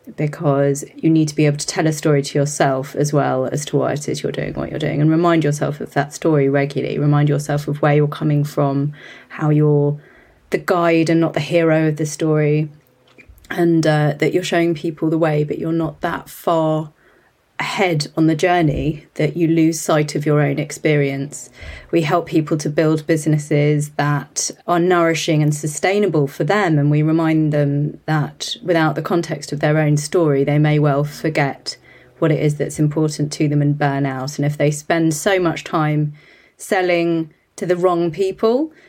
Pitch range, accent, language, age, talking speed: 150-170 Hz, British, English, 30-49, 195 wpm